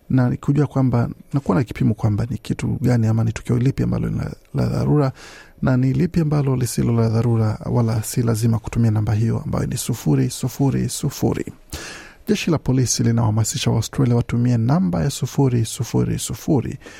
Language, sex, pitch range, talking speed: Swahili, male, 115-145 Hz, 175 wpm